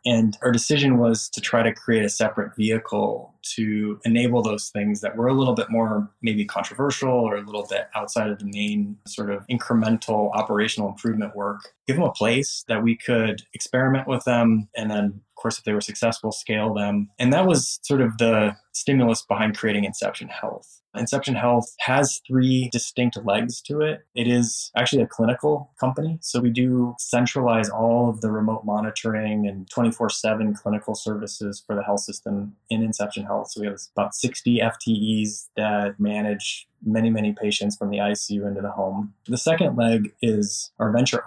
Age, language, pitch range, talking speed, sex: 20-39, English, 105-120 Hz, 180 wpm, male